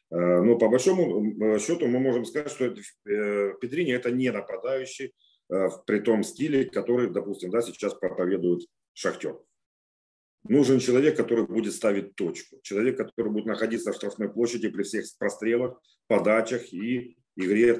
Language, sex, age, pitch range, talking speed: Ukrainian, male, 40-59, 95-125 Hz, 130 wpm